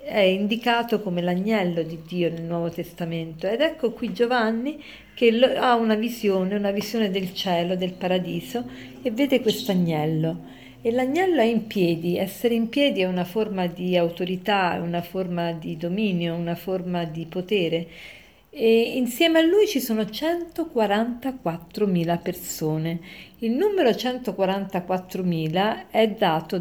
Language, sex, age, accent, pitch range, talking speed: Italian, female, 50-69, native, 175-225 Hz, 135 wpm